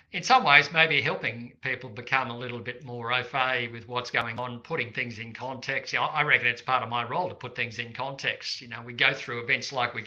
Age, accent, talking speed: 50-69, Australian, 255 wpm